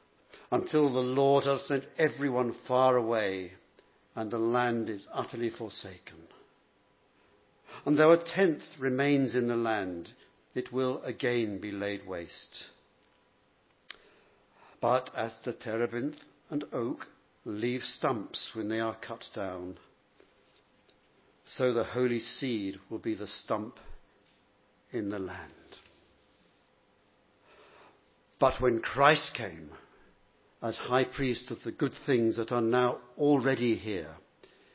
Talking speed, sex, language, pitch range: 115 wpm, male, English, 110-125 Hz